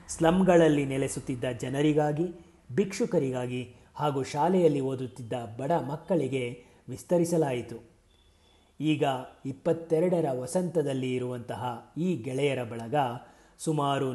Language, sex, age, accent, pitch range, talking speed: Kannada, male, 30-49, native, 125-160 Hz, 75 wpm